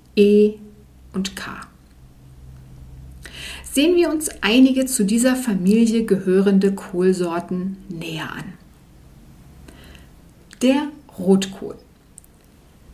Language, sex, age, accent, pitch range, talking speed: German, female, 50-69, German, 180-230 Hz, 75 wpm